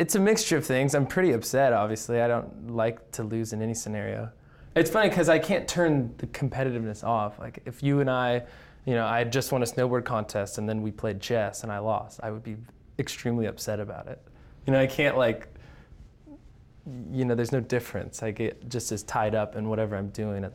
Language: English